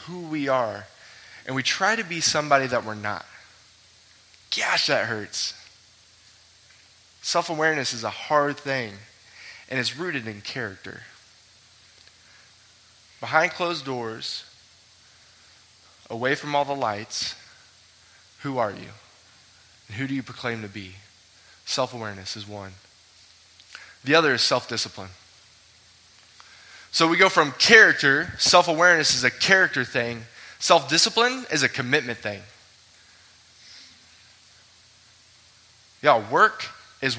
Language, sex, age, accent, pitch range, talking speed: English, male, 20-39, American, 100-140 Hz, 110 wpm